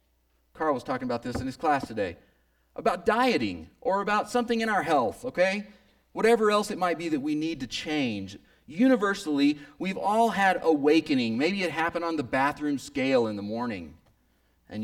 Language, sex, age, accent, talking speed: English, male, 40-59, American, 180 wpm